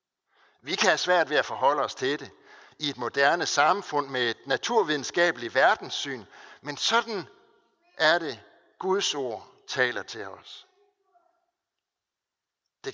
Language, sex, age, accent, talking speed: Danish, male, 60-79, native, 130 wpm